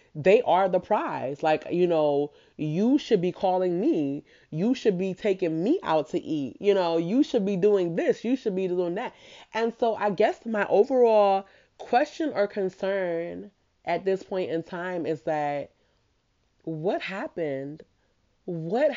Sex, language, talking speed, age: female, English, 160 wpm, 20-39